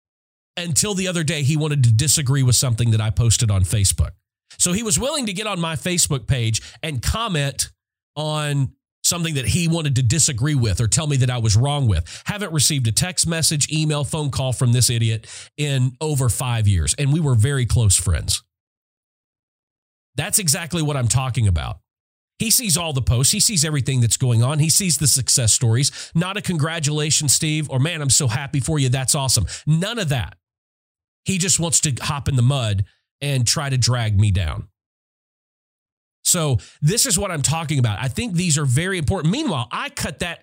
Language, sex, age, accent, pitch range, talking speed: English, male, 40-59, American, 115-155 Hz, 195 wpm